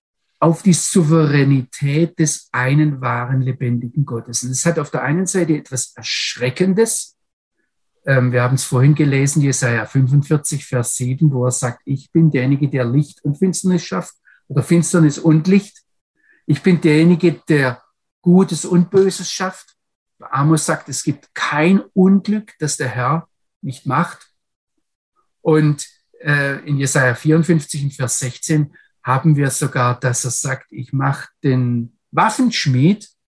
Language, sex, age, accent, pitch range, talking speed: German, male, 50-69, German, 135-180 Hz, 135 wpm